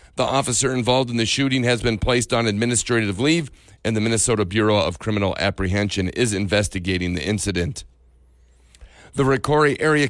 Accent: American